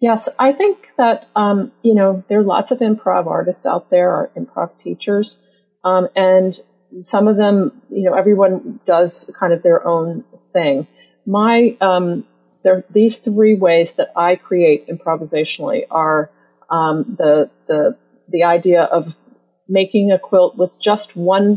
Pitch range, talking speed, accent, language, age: 165-205 Hz, 155 wpm, American, English, 40-59